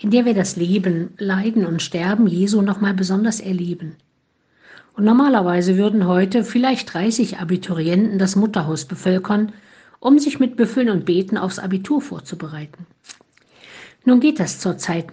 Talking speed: 140 wpm